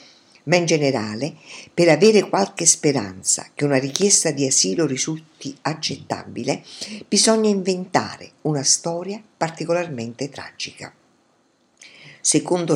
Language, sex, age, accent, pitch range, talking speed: Italian, female, 50-69, native, 135-175 Hz, 100 wpm